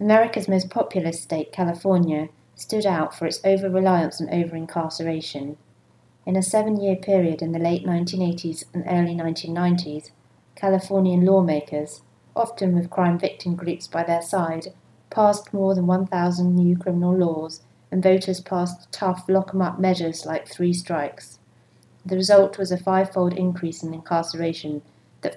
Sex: female